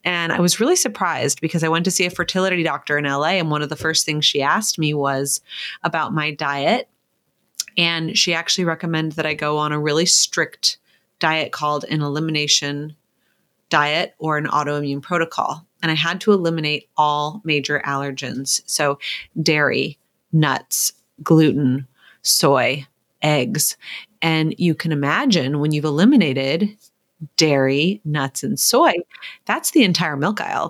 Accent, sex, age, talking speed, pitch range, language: American, female, 30-49, 150 wpm, 150-180 Hz, English